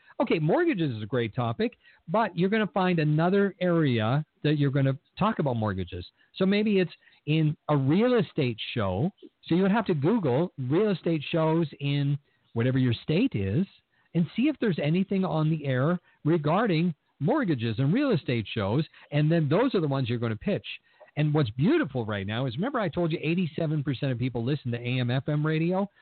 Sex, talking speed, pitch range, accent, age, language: male, 195 wpm, 130-185 Hz, American, 50-69, English